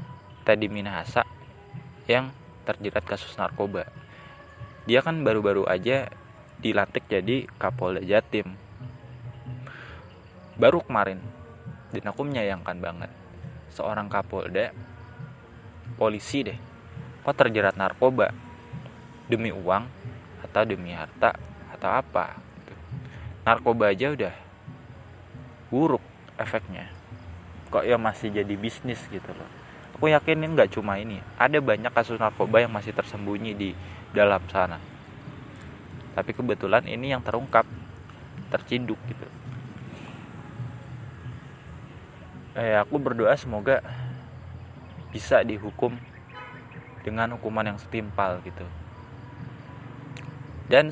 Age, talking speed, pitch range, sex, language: 20-39, 95 wpm, 100-125 Hz, male, Indonesian